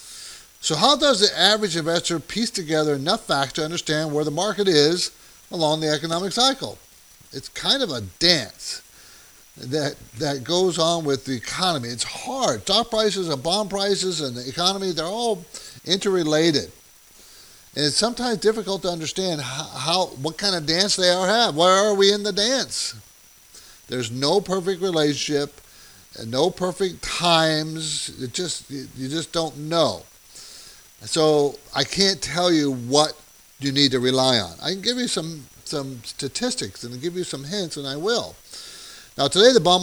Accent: American